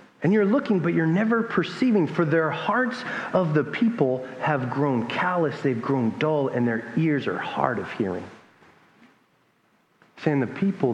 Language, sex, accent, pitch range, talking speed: English, male, American, 145-205 Hz, 160 wpm